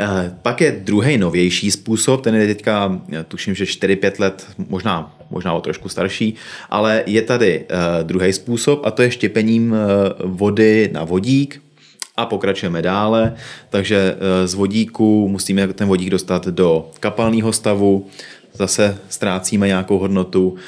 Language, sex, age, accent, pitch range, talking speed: Czech, male, 30-49, native, 95-110 Hz, 135 wpm